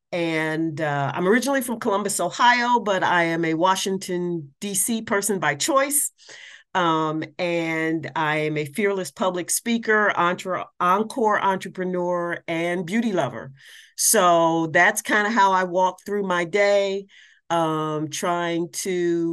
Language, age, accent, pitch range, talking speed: English, 40-59, American, 150-195 Hz, 130 wpm